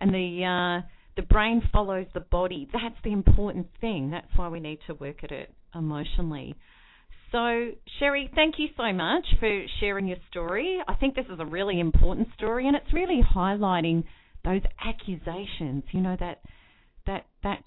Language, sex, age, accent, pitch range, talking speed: English, female, 40-59, Australian, 175-230 Hz, 170 wpm